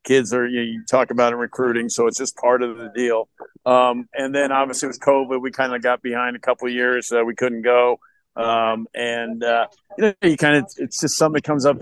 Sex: male